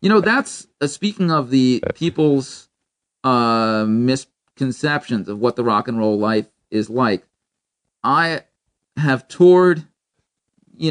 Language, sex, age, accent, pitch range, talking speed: English, male, 40-59, American, 115-140 Hz, 120 wpm